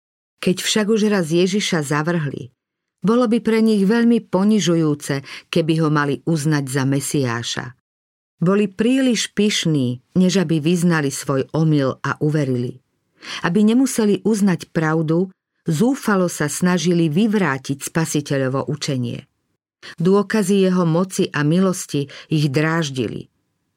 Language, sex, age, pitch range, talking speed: Slovak, female, 50-69, 145-185 Hz, 115 wpm